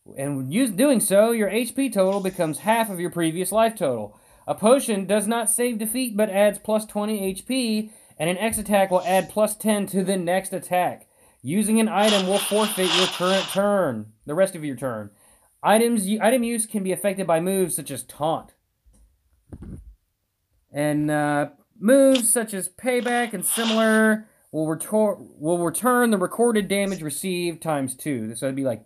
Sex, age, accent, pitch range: male, 30-49, American, 145-220 Hz